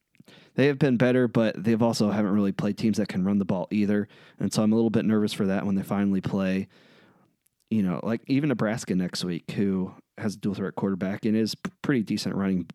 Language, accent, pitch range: English, American, 95-120 Hz